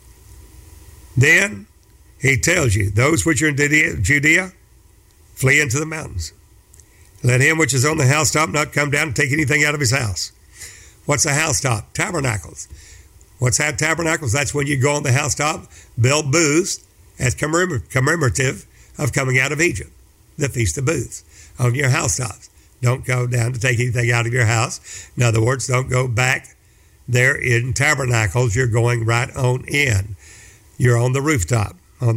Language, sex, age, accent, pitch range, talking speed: English, male, 60-79, American, 105-145 Hz, 165 wpm